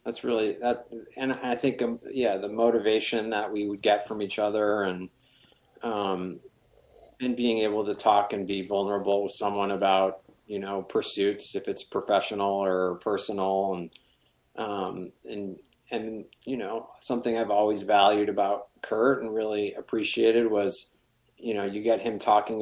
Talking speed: 155 wpm